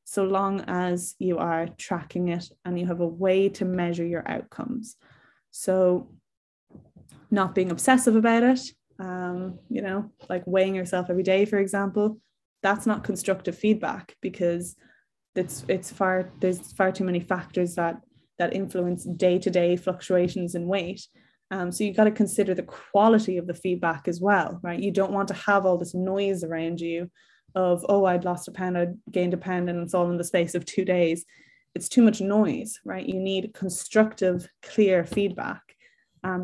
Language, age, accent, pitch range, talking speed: English, 20-39, Irish, 180-210 Hz, 175 wpm